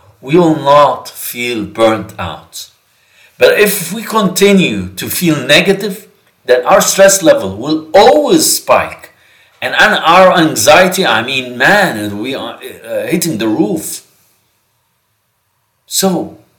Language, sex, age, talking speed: English, male, 50-69, 115 wpm